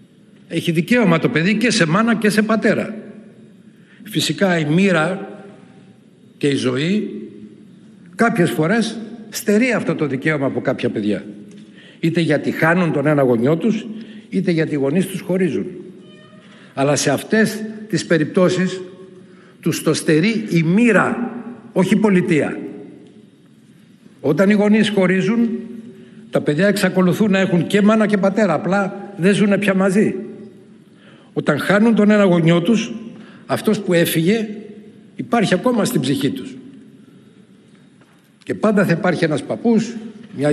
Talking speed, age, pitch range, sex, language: 135 wpm, 60-79, 165-215 Hz, male, Greek